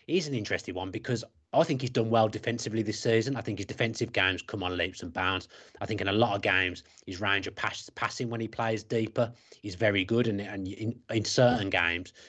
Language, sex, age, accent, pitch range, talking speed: English, male, 30-49, British, 100-120 Hz, 235 wpm